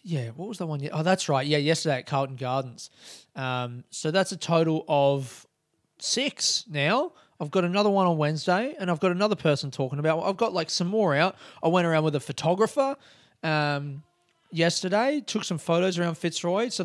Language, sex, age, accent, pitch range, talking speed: English, male, 20-39, Australian, 130-175 Hz, 190 wpm